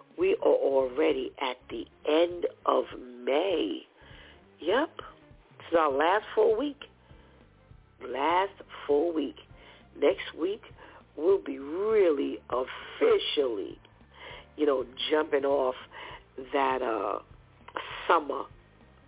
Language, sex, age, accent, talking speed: English, female, 50-69, American, 95 wpm